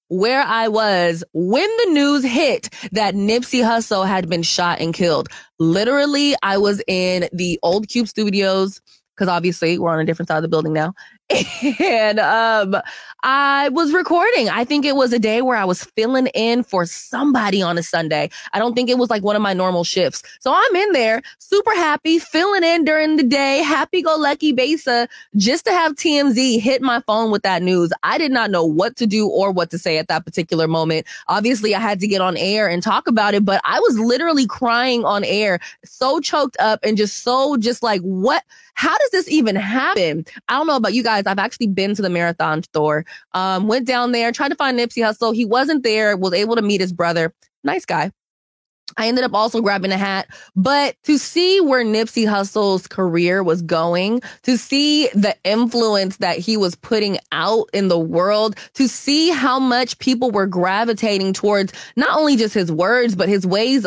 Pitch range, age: 190-260 Hz, 20-39